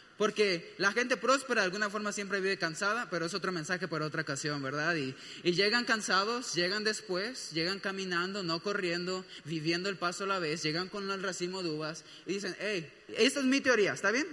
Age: 20-39